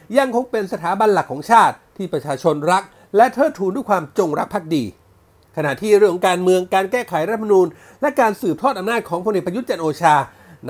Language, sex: Thai, male